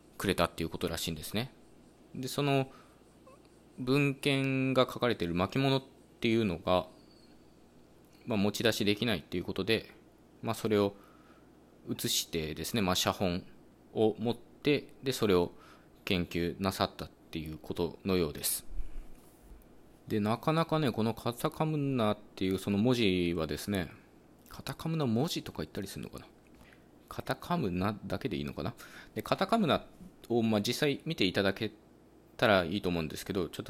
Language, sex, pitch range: Japanese, male, 90-125 Hz